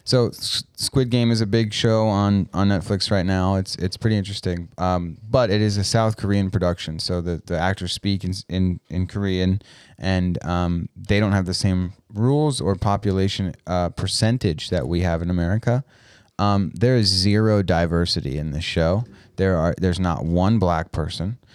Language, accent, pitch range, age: English, American, 90-105 Hz, 30-49